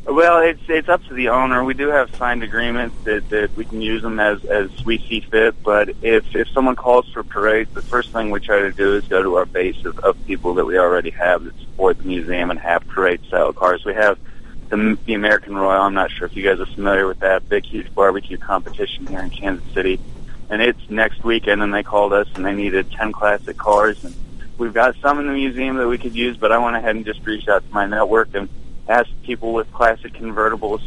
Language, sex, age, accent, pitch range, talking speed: English, male, 30-49, American, 100-120 Hz, 240 wpm